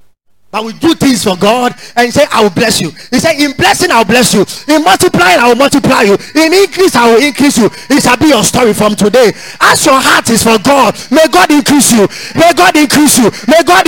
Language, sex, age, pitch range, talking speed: English, male, 30-49, 230-325 Hz, 235 wpm